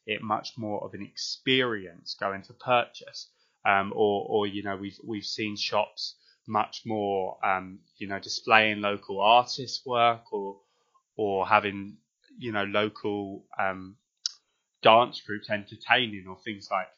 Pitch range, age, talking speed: 100-120 Hz, 20-39, 140 wpm